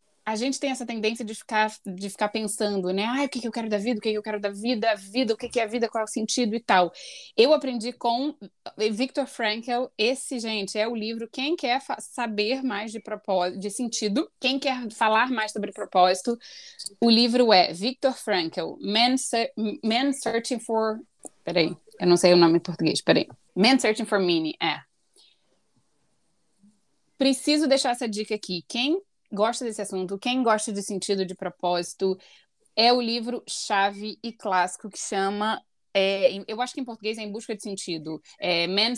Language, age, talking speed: Portuguese, 20-39, 185 wpm